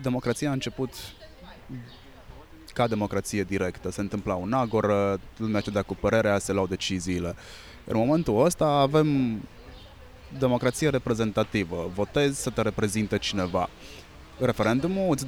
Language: Romanian